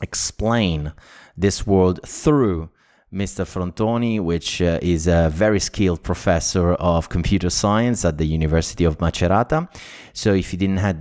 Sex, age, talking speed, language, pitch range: male, 30-49, 140 wpm, Italian, 85-105 Hz